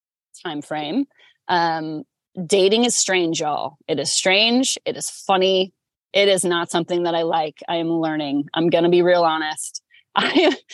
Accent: American